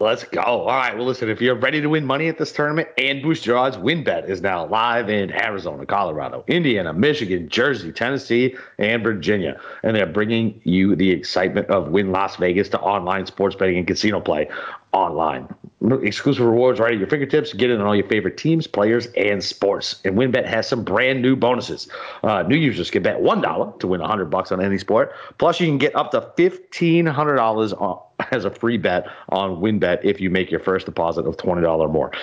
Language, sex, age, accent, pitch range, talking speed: English, male, 40-59, American, 95-130 Hz, 205 wpm